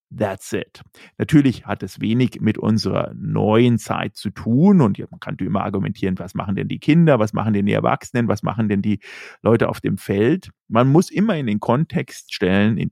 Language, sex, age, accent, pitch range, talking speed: German, male, 40-59, German, 105-130 Hz, 200 wpm